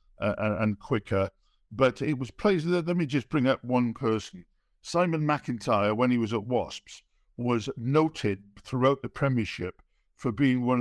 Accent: British